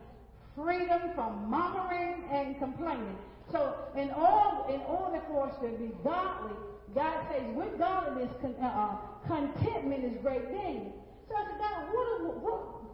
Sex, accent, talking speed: female, American, 135 wpm